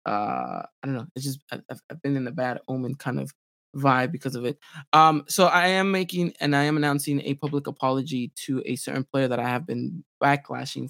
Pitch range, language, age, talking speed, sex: 130-175 Hz, English, 20-39, 220 wpm, male